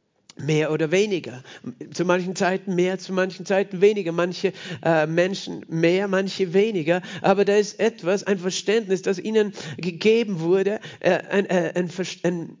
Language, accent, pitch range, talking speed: German, German, 155-190 Hz, 155 wpm